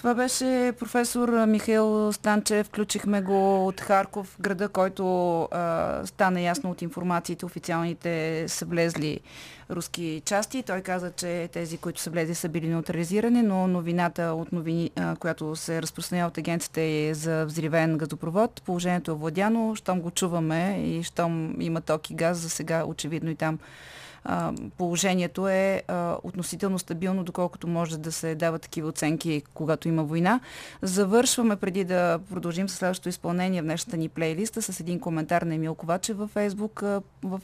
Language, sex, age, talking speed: Bulgarian, female, 30-49, 155 wpm